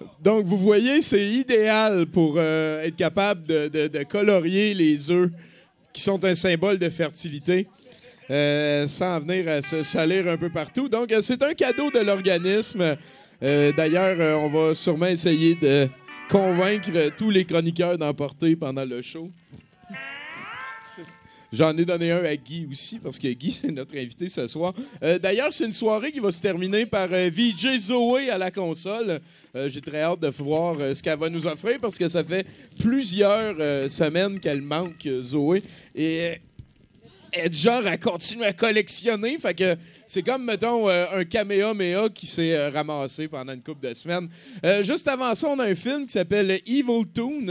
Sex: male